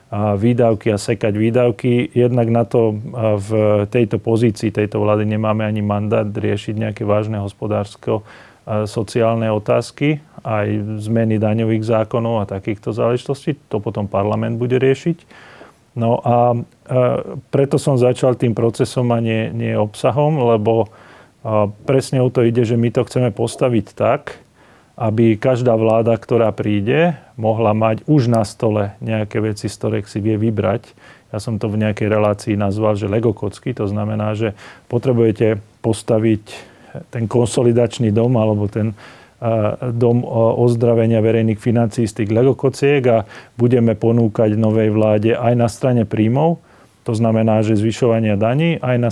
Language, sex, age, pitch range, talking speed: Slovak, male, 40-59, 110-125 Hz, 140 wpm